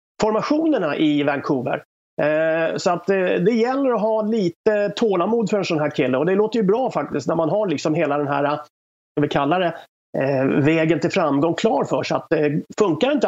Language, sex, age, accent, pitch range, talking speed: English, male, 30-49, Swedish, 155-210 Hz, 195 wpm